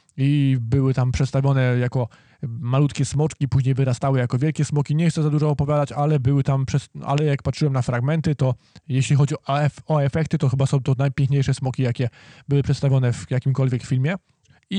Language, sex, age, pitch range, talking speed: Polish, male, 20-39, 125-150 Hz, 185 wpm